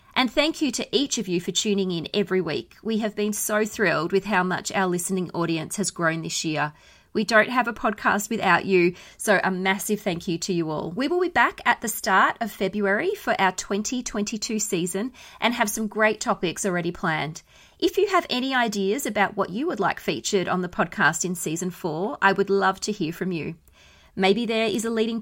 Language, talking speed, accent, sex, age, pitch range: English, 215 wpm, Australian, female, 30-49, 180-220 Hz